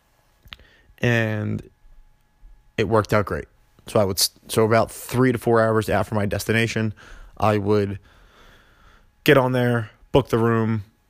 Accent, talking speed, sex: American, 135 wpm, male